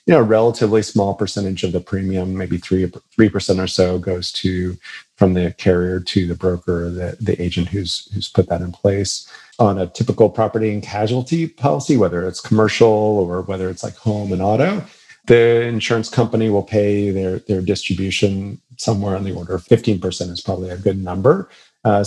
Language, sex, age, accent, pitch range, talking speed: English, male, 40-59, American, 90-110 Hz, 185 wpm